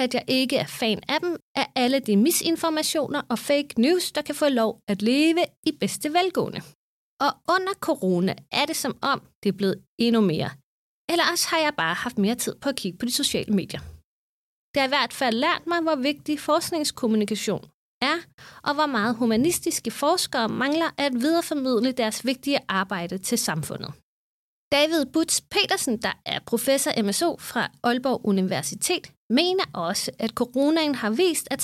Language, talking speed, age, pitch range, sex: Danish, 170 wpm, 30-49, 220-315 Hz, female